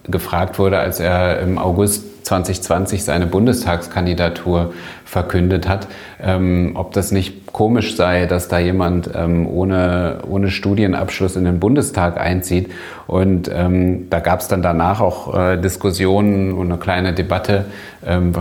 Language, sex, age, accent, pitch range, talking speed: German, male, 30-49, German, 90-95 Hz, 140 wpm